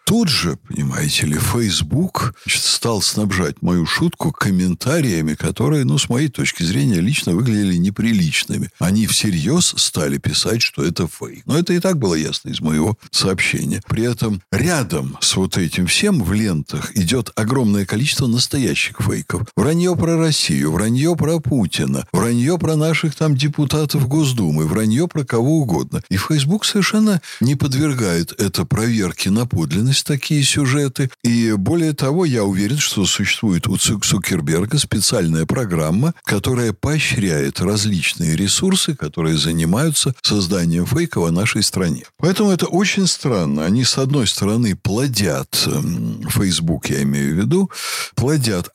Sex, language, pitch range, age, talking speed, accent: male, Russian, 95-155 Hz, 60-79, 140 wpm, native